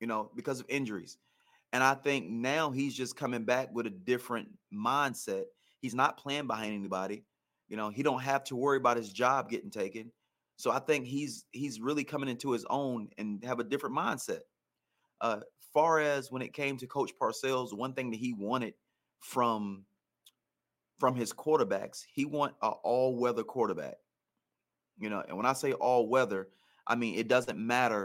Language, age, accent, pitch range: English, 30-49, American, 115-140 Hz